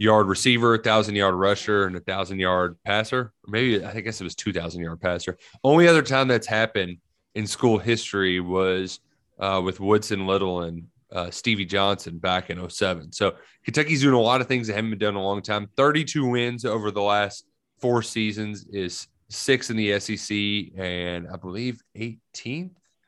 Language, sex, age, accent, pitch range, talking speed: English, male, 30-49, American, 95-115 Hz, 185 wpm